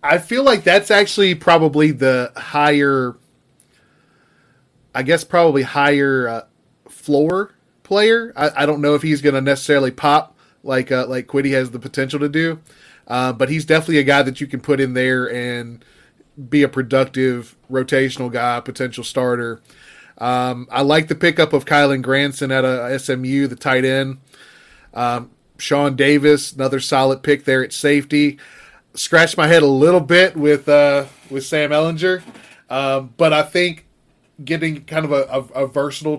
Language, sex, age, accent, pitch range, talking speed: English, male, 20-39, American, 135-155 Hz, 165 wpm